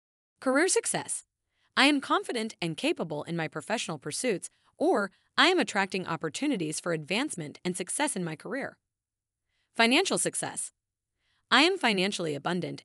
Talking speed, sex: 135 wpm, female